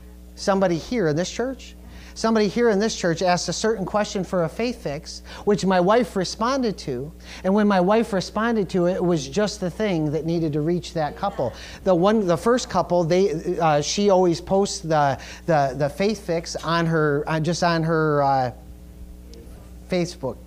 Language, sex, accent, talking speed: English, male, American, 190 wpm